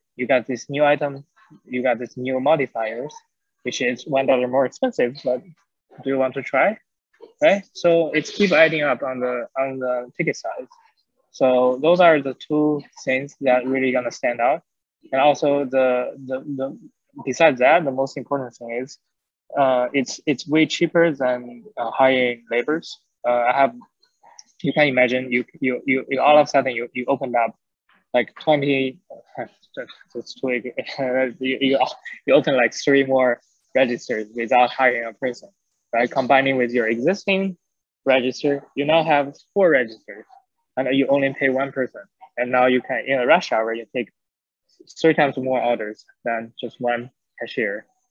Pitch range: 125-150 Hz